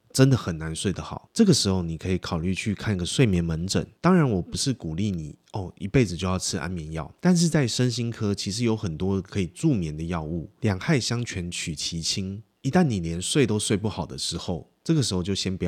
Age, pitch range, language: 20-39, 85-110 Hz, Chinese